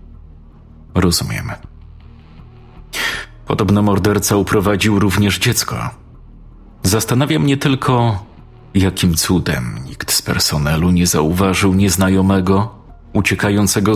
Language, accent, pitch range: Polish, native, 90-110 Hz